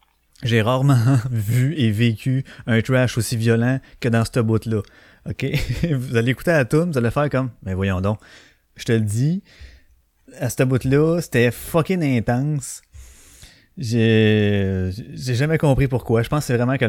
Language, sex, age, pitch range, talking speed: French, male, 20-39, 110-140 Hz, 180 wpm